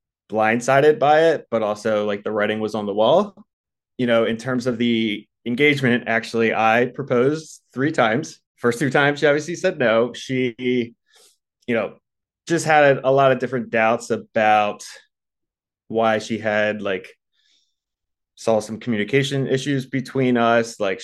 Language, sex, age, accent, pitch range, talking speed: English, male, 20-39, American, 110-130 Hz, 150 wpm